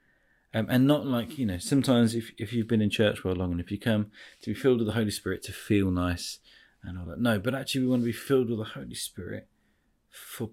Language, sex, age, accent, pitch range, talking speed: English, male, 20-39, British, 100-120 Hz, 255 wpm